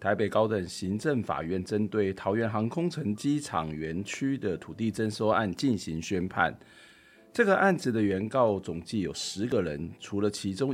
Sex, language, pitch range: male, Chinese, 95-130 Hz